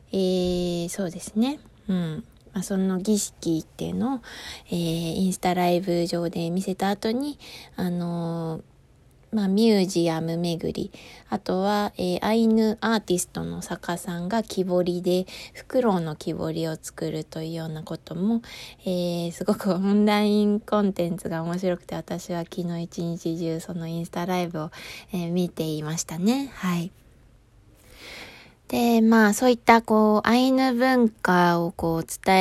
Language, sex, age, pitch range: Japanese, female, 20-39, 165-205 Hz